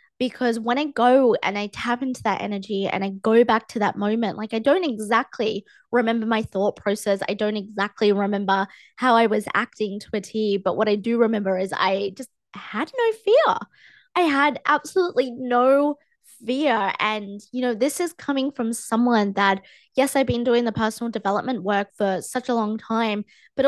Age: 20-39